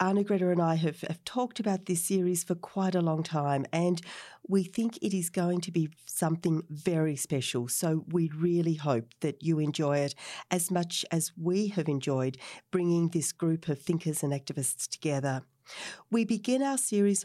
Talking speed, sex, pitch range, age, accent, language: 180 wpm, female, 160-220 Hz, 40-59, Australian, English